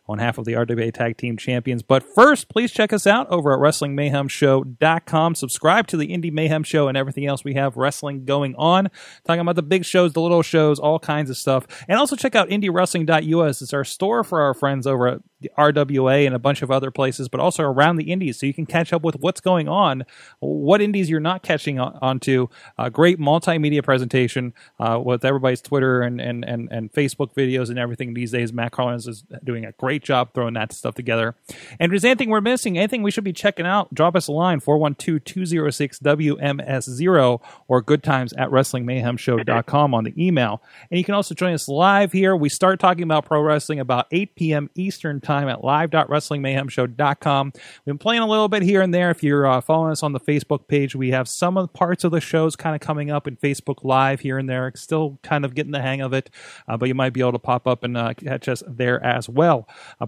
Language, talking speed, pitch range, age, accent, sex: English, 220 wpm, 130-170 Hz, 30-49, American, male